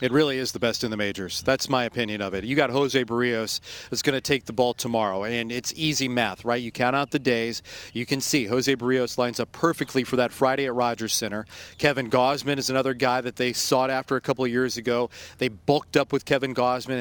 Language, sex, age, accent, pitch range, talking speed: English, male, 40-59, American, 125-150 Hz, 240 wpm